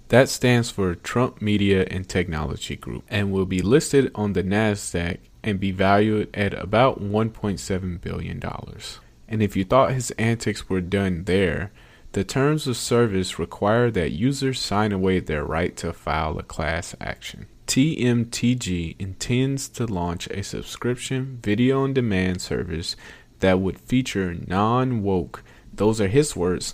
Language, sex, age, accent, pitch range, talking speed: English, male, 30-49, American, 95-115 Hz, 145 wpm